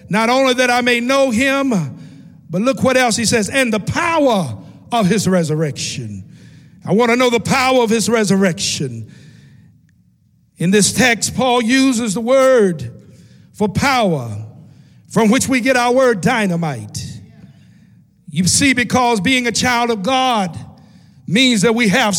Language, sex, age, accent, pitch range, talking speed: English, male, 50-69, American, 180-255 Hz, 150 wpm